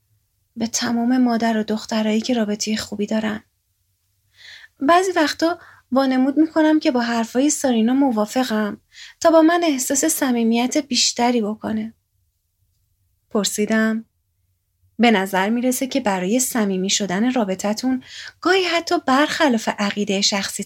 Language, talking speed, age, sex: Persian, 115 wpm, 30-49, female